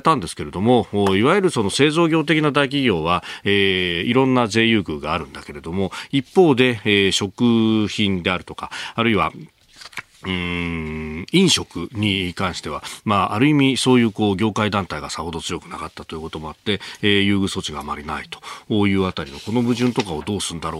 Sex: male